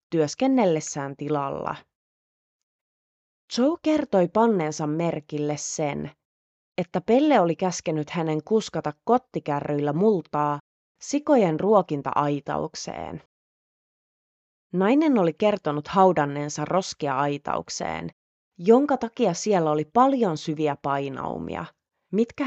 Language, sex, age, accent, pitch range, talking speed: Finnish, female, 30-49, native, 150-210 Hz, 80 wpm